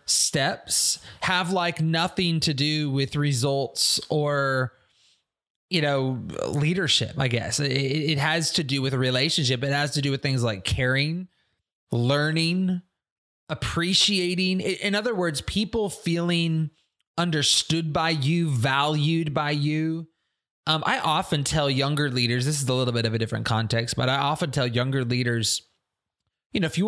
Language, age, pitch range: English, 20-39, 135-170 Hz